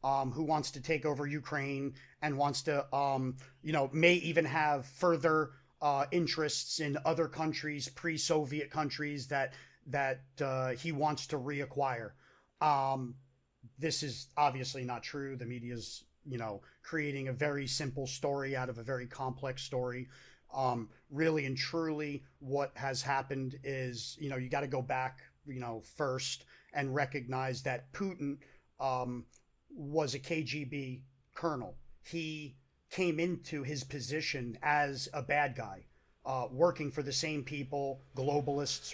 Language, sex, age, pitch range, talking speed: English, male, 30-49, 130-155 Hz, 145 wpm